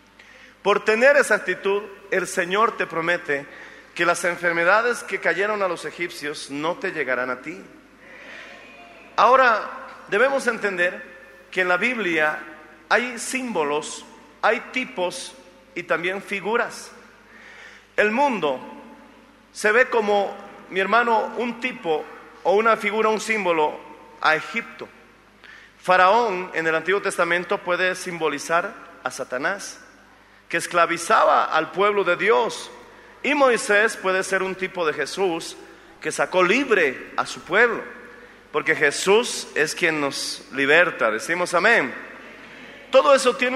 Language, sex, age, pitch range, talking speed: Spanish, male, 40-59, 175-230 Hz, 125 wpm